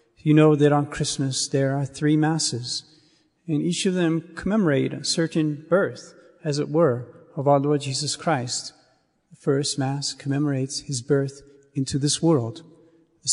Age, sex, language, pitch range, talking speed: 40-59, male, English, 145-170 Hz, 160 wpm